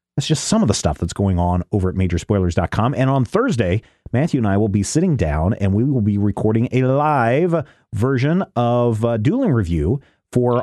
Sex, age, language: male, 40-59, English